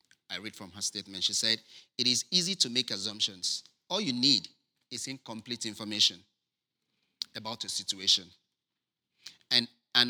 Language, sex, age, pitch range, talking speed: English, male, 30-49, 110-140 Hz, 145 wpm